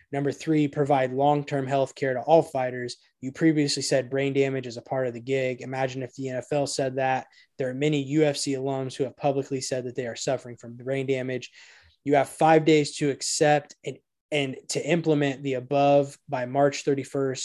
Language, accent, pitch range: English, American, 130-145 Hz